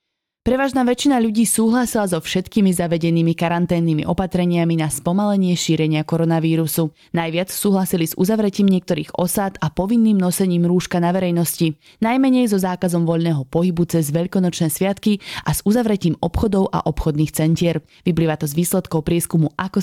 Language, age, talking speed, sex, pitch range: Slovak, 20-39, 140 wpm, female, 165-200 Hz